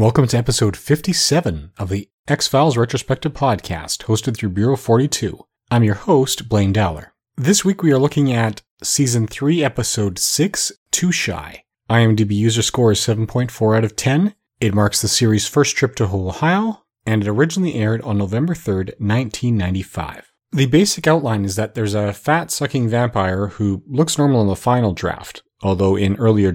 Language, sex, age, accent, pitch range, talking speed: English, male, 30-49, American, 100-125 Hz, 165 wpm